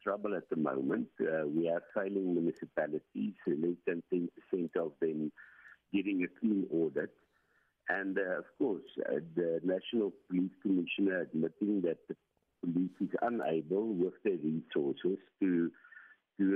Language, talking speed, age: English, 140 wpm, 60-79